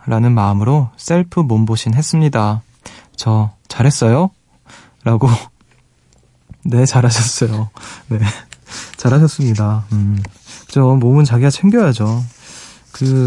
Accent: native